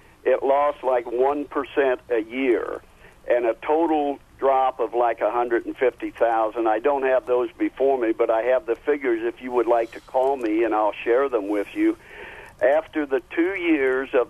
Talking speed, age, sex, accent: 175 wpm, 60-79, male, American